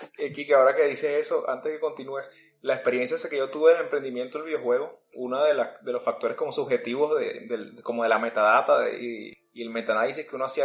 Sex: male